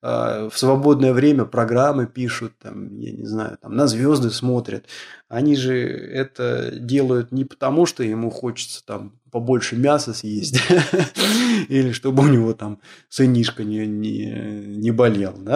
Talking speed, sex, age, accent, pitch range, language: 130 wpm, male, 20-39, native, 110-135 Hz, Russian